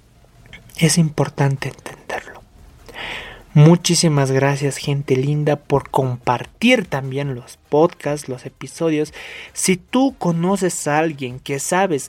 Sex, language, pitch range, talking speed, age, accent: male, Spanish, 135-170 Hz, 105 wpm, 30-49, Mexican